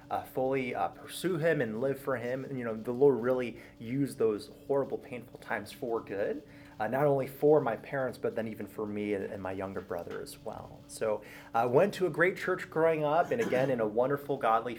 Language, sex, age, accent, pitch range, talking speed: English, male, 30-49, American, 120-160 Hz, 225 wpm